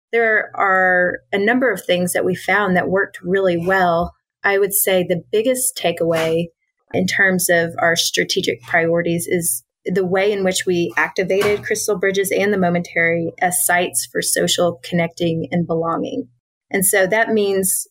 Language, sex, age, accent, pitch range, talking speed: English, female, 30-49, American, 175-200 Hz, 160 wpm